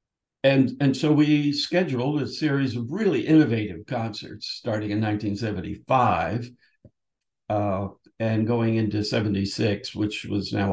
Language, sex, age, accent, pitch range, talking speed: English, male, 60-79, American, 105-135 Hz, 125 wpm